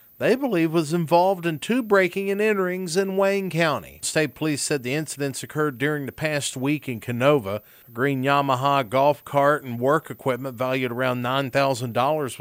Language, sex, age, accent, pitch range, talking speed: English, male, 50-69, American, 130-175 Hz, 170 wpm